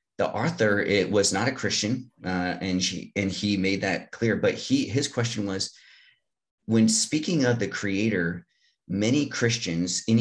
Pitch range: 95-115 Hz